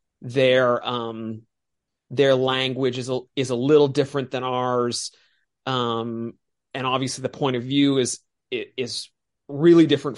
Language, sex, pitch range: English, male, 120-145 Hz